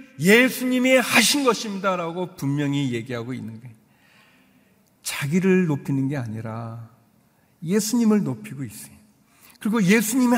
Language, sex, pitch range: Korean, male, 120-190 Hz